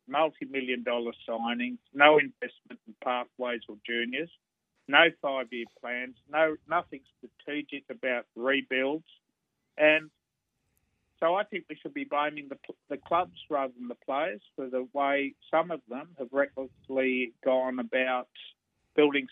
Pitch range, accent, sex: 125-150 Hz, Australian, male